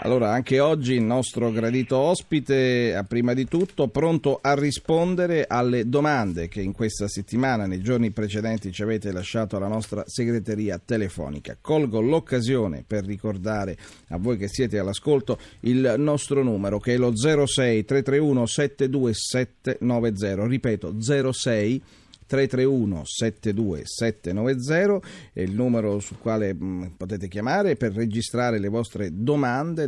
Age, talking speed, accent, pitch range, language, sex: 40-59, 125 wpm, native, 100-130 Hz, Italian, male